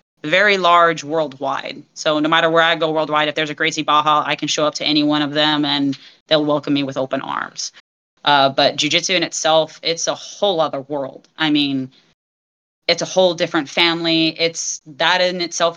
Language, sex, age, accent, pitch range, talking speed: English, female, 30-49, American, 145-160 Hz, 200 wpm